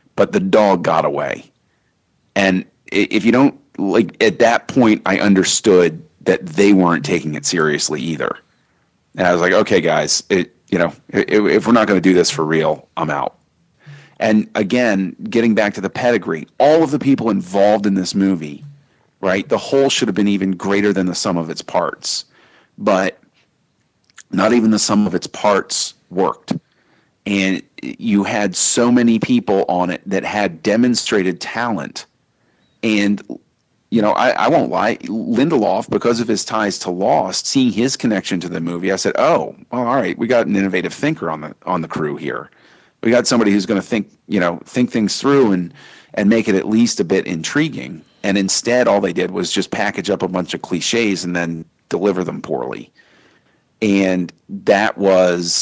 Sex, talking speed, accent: male, 185 wpm, American